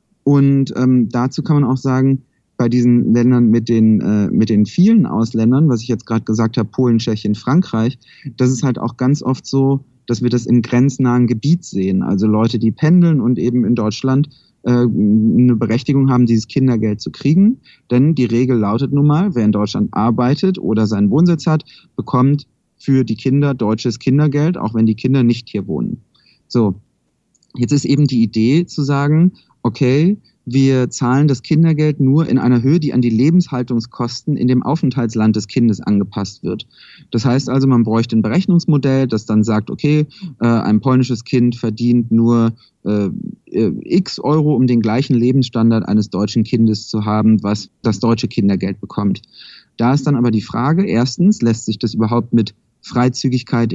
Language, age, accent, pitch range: German, 30-49, German, 115-140 Hz